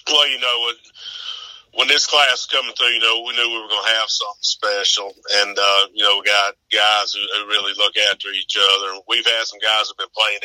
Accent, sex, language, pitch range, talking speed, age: American, male, English, 100-110 Hz, 245 wpm, 40-59